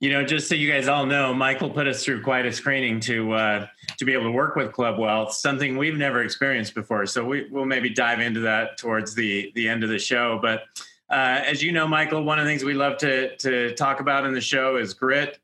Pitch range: 120-150 Hz